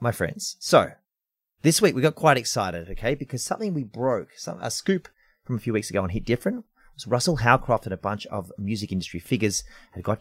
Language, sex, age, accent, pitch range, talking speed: English, male, 30-49, Australian, 95-140 Hz, 220 wpm